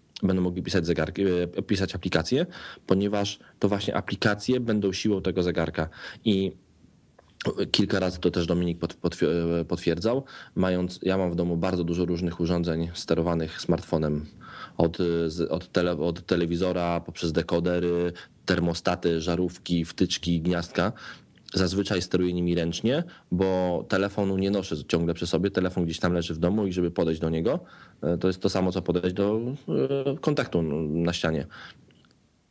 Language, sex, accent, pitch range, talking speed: Polish, male, native, 85-100 Hz, 135 wpm